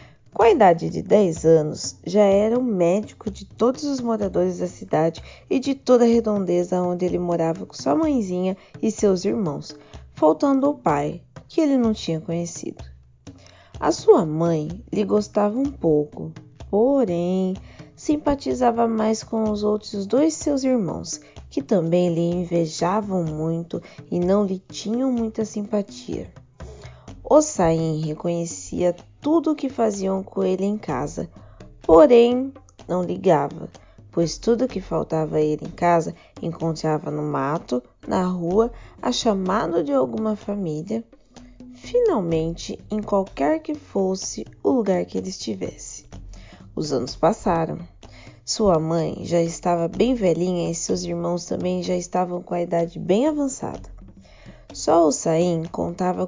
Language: Portuguese